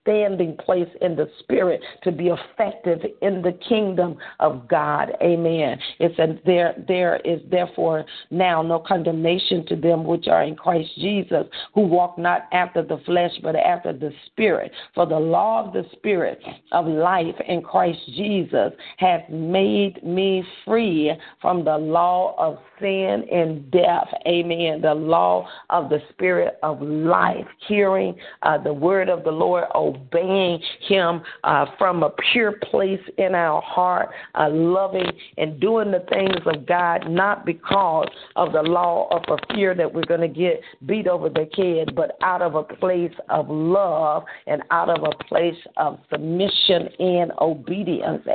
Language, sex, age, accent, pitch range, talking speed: English, female, 50-69, American, 165-190 Hz, 160 wpm